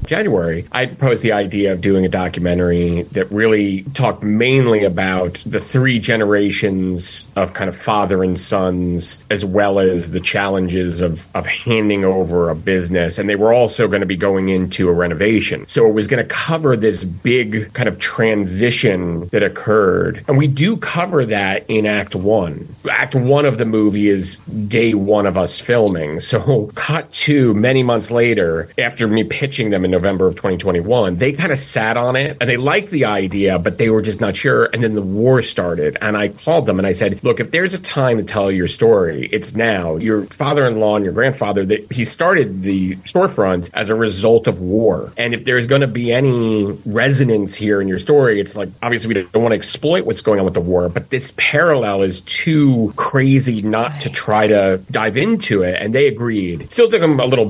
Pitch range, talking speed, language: 95-120 Hz, 200 wpm, English